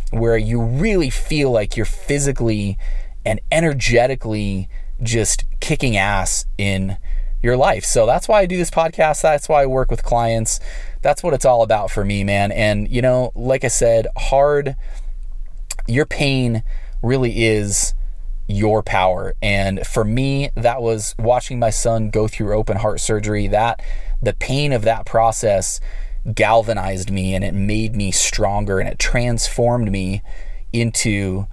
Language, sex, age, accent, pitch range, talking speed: English, male, 20-39, American, 100-120 Hz, 150 wpm